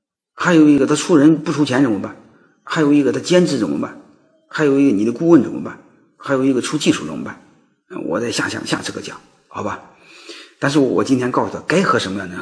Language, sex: Chinese, male